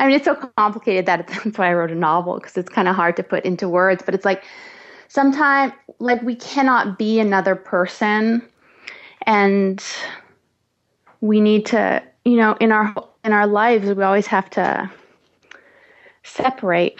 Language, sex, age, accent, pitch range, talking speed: English, female, 20-39, American, 180-220 Hz, 160 wpm